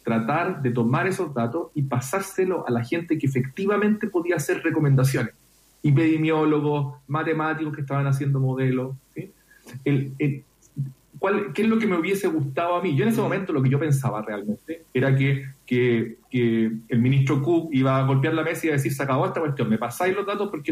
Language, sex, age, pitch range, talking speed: Spanish, male, 40-59, 135-175 Hz, 195 wpm